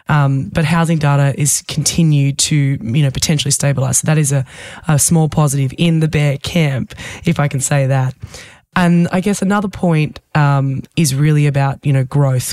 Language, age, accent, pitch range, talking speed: English, 20-39, Australian, 140-160 Hz, 185 wpm